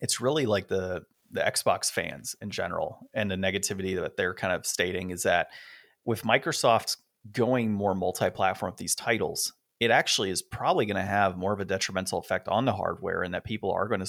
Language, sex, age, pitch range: English, male, 30-49, 95-110 Hz